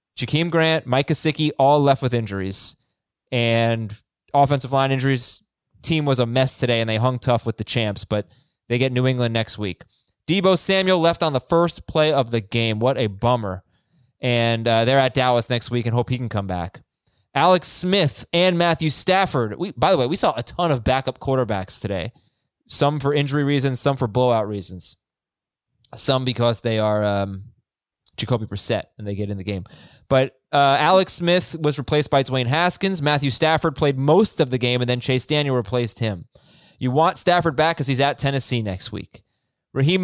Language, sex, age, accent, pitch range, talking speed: English, male, 20-39, American, 115-155 Hz, 190 wpm